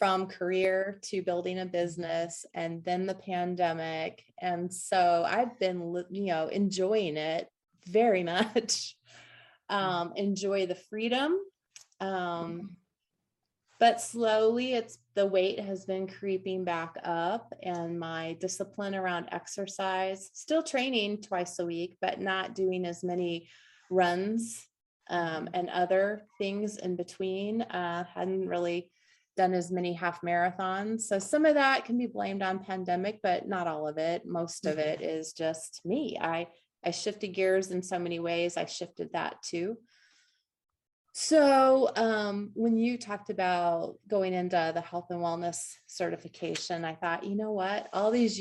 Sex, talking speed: female, 145 wpm